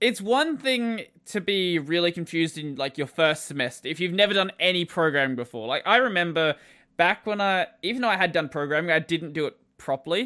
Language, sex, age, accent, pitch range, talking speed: English, male, 20-39, Australian, 140-180 Hz, 210 wpm